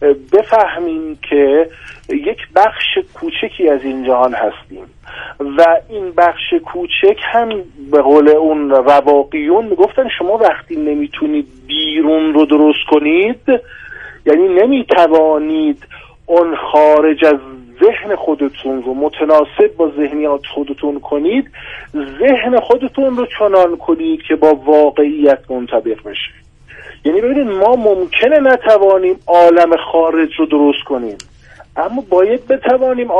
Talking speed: 115 wpm